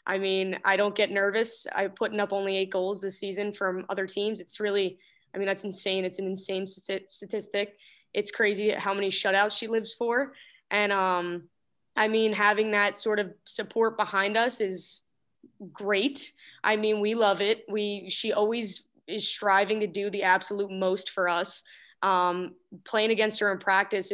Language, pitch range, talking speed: English, 190-210 Hz, 175 wpm